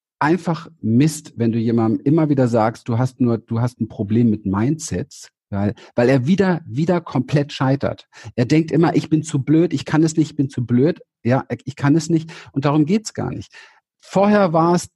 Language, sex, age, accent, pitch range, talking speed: German, male, 50-69, German, 115-155 Hz, 215 wpm